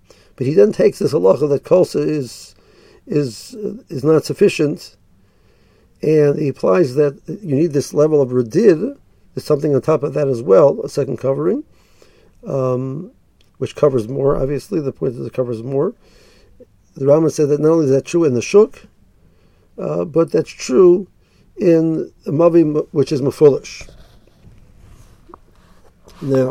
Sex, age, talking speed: male, 50-69, 155 wpm